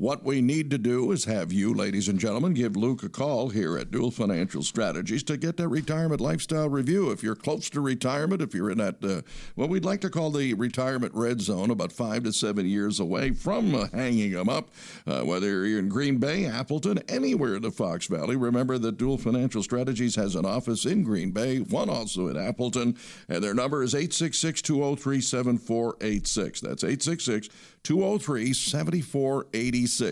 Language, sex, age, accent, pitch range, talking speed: English, male, 60-79, American, 115-145 Hz, 180 wpm